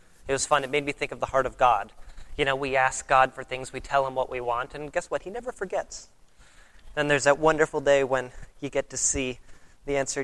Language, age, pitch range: English, 30-49, 120-150 Hz